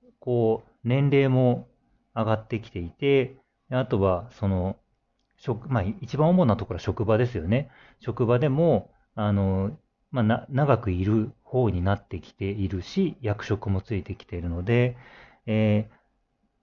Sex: male